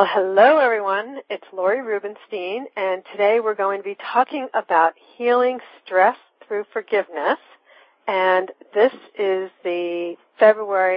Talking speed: 125 wpm